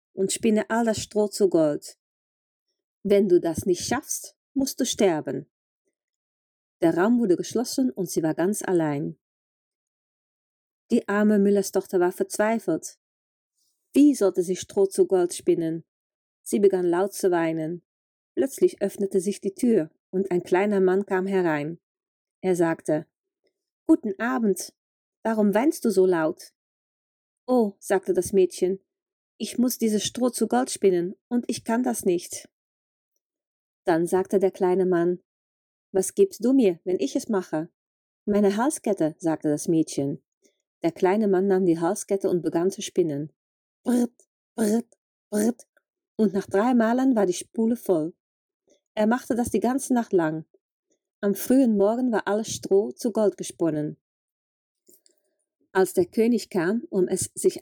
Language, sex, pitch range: German, female, 175-230 Hz